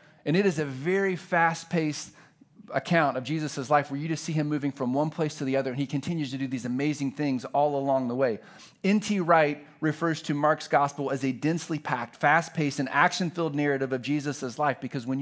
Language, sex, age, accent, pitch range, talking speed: English, male, 40-59, American, 140-180 Hz, 210 wpm